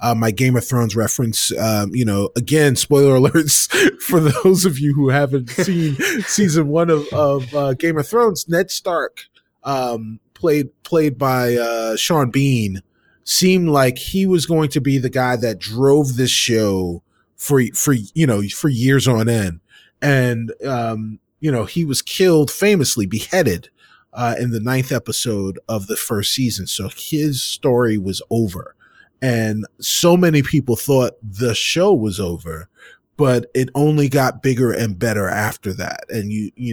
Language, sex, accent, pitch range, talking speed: English, male, American, 115-150 Hz, 165 wpm